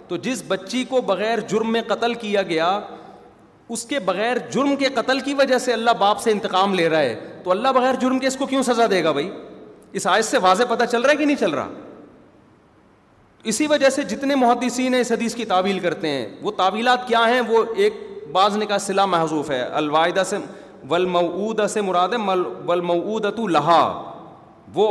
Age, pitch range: 40-59, 165-230 Hz